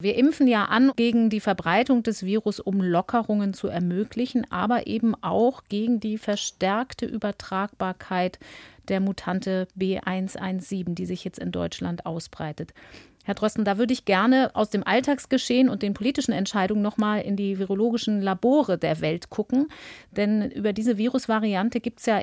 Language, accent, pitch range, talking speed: German, German, 185-235 Hz, 155 wpm